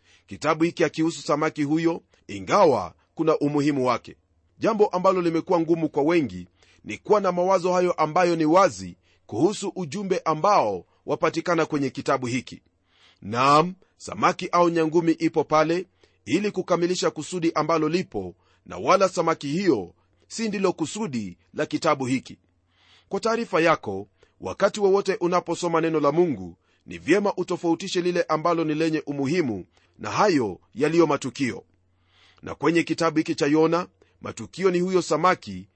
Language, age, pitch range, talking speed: Swahili, 40-59, 115-180 Hz, 140 wpm